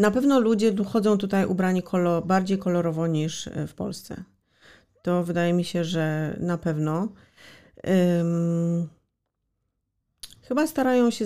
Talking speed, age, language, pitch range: 110 wpm, 40-59, Polish, 165-205 Hz